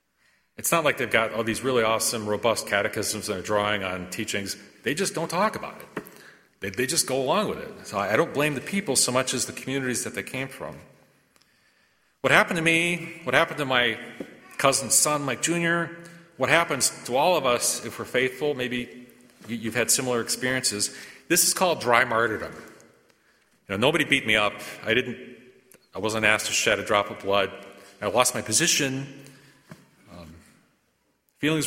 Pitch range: 110-145 Hz